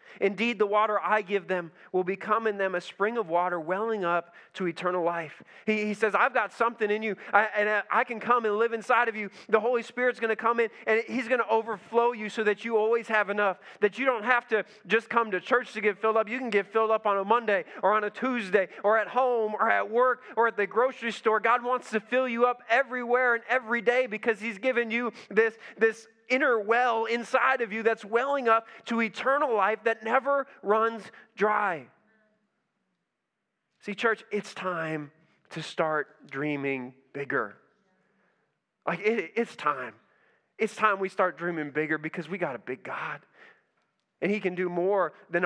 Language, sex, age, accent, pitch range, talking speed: English, male, 20-39, American, 180-230 Hz, 200 wpm